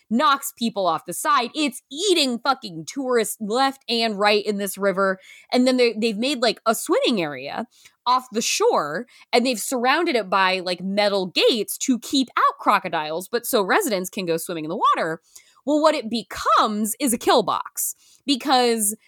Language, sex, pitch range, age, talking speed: English, female, 200-280 Hz, 20-39, 180 wpm